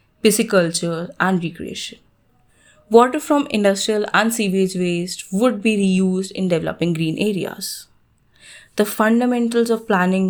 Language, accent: English, Indian